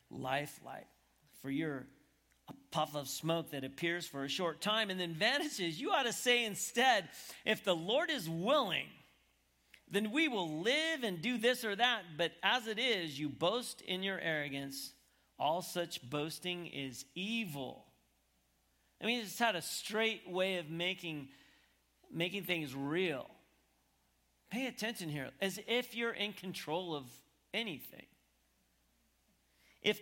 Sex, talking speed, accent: male, 145 wpm, American